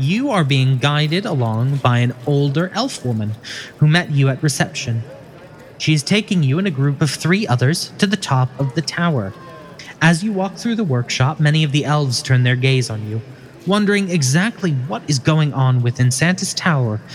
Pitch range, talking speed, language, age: 125-170 Hz, 195 wpm, English, 20-39